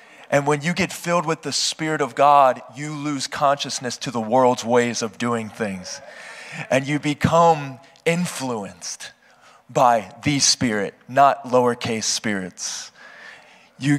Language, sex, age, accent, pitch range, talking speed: English, male, 20-39, American, 130-155 Hz, 135 wpm